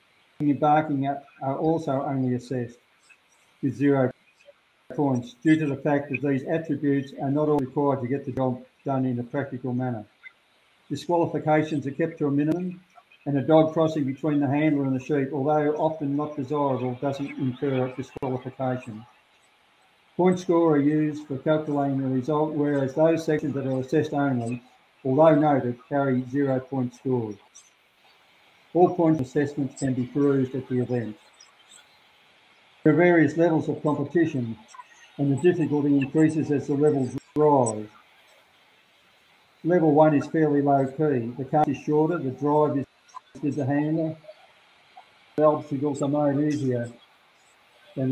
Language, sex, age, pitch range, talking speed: English, male, 50-69, 130-155 Hz, 150 wpm